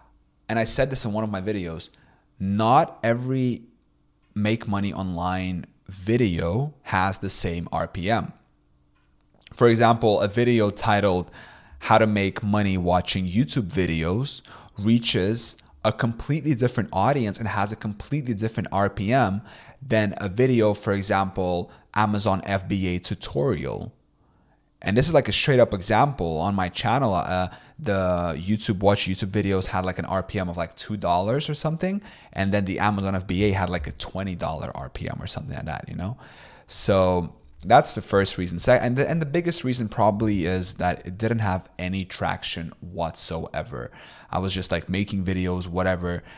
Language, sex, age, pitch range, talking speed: English, male, 20-39, 90-110 Hz, 155 wpm